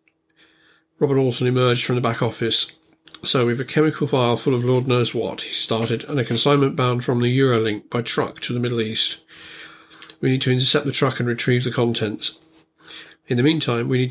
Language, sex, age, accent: English, male, 40-59, British